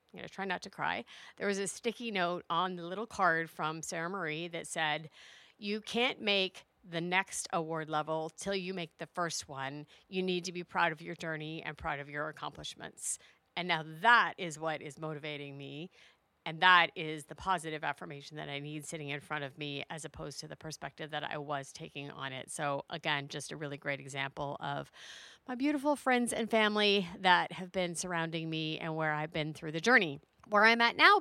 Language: English